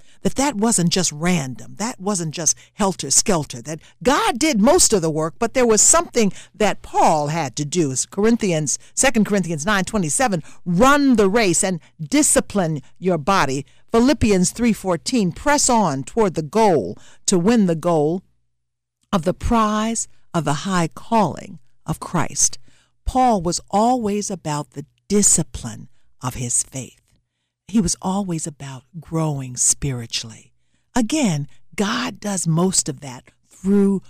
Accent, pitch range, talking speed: American, 140-210 Hz, 140 wpm